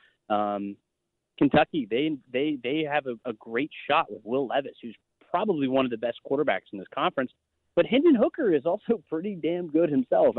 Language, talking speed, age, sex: English, 185 wpm, 30-49, male